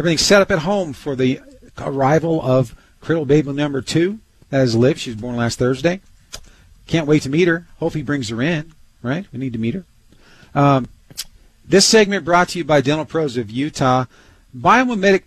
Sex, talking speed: male, 195 wpm